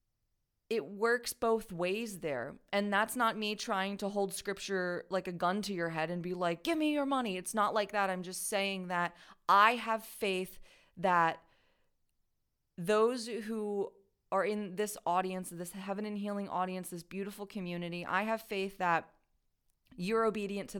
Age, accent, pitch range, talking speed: 30-49, American, 175-215 Hz, 170 wpm